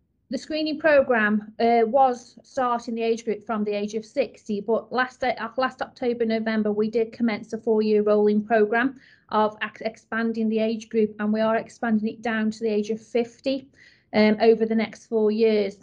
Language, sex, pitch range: English, female, 210-235 Hz